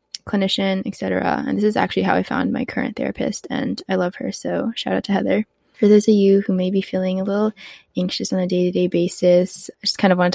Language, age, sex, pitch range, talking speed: English, 20-39, female, 180-200 Hz, 245 wpm